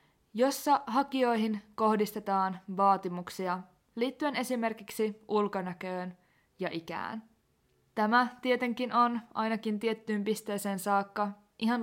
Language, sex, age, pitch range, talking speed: Finnish, female, 20-39, 195-240 Hz, 85 wpm